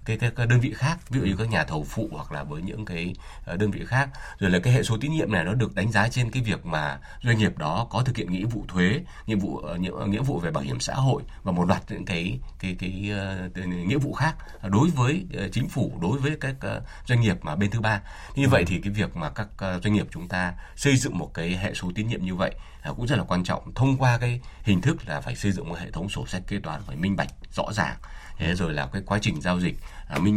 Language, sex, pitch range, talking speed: Vietnamese, male, 90-120 Hz, 270 wpm